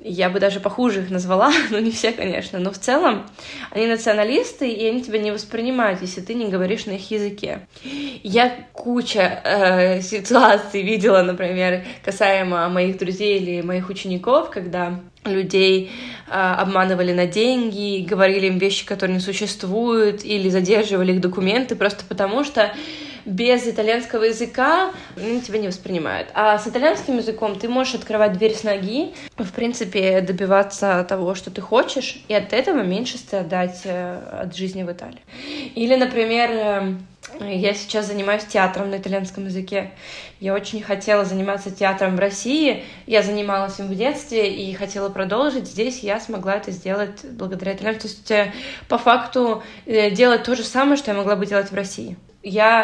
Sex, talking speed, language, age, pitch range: female, 155 wpm, Russian, 20-39, 195-230 Hz